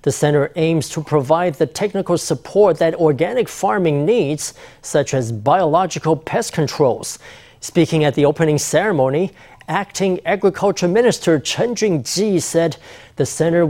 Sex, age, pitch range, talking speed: male, 40-59, 155-195 Hz, 135 wpm